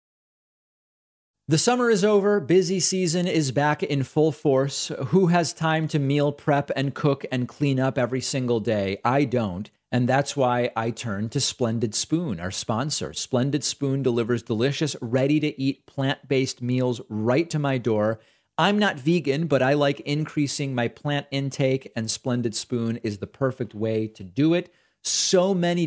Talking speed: 170 wpm